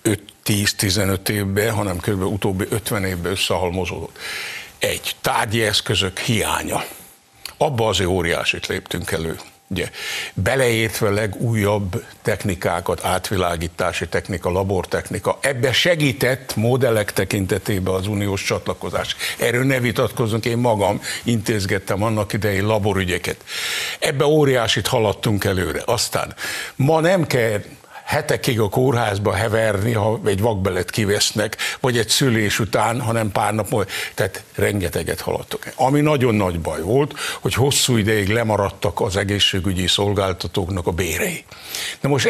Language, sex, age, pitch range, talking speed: Hungarian, male, 60-79, 100-120 Hz, 120 wpm